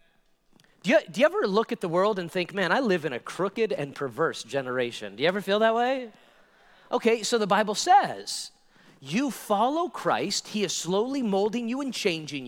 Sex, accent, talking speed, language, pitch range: male, American, 190 wpm, English, 175-260 Hz